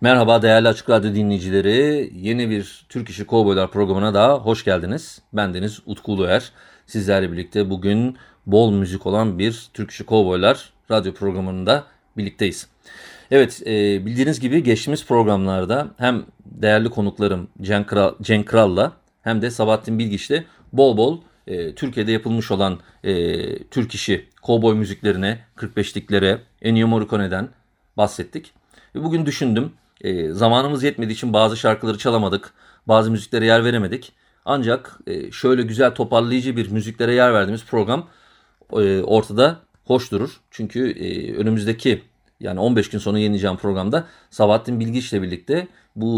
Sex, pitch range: male, 100-120 Hz